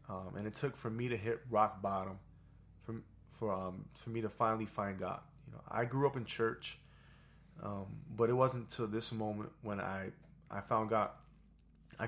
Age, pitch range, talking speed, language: 20-39, 100-115 Hz, 195 wpm, English